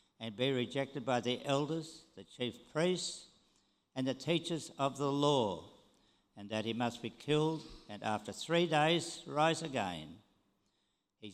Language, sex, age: English, male, 60-79